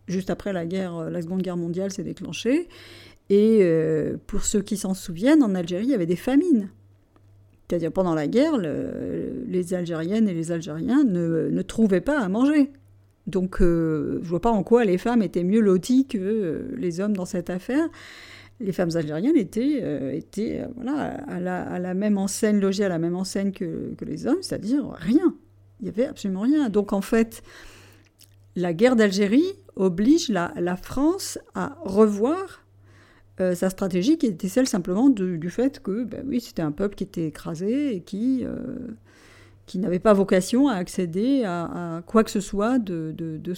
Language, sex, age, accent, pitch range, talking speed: French, female, 50-69, French, 175-235 Hz, 185 wpm